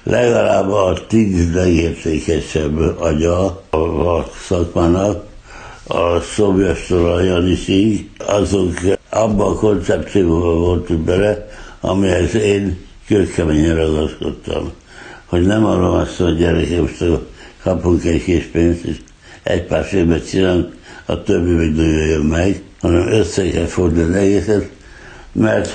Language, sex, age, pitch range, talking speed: Hungarian, male, 60-79, 85-95 Hz, 110 wpm